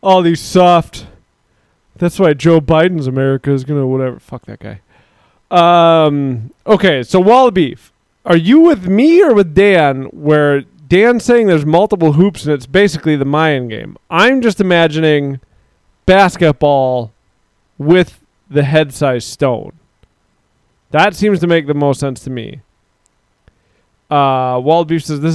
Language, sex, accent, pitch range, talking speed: English, male, American, 125-170 Hz, 145 wpm